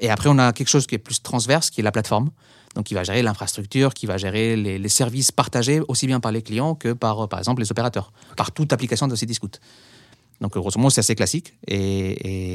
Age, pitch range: 30-49, 105-130 Hz